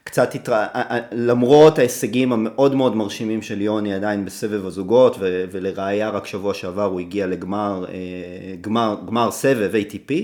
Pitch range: 105-155 Hz